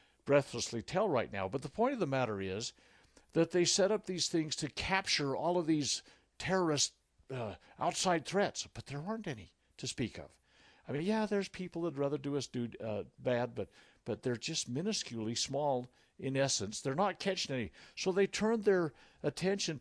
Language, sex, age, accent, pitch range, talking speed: English, male, 60-79, American, 130-175 Hz, 190 wpm